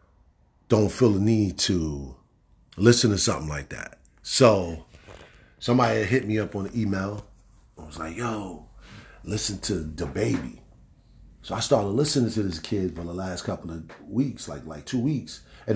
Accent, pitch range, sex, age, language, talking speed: American, 80-110 Hz, male, 40-59, English, 170 wpm